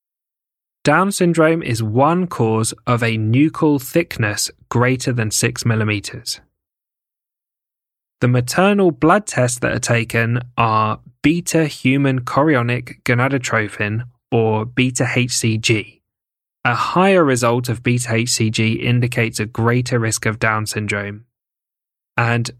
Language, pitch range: English, 115-140 Hz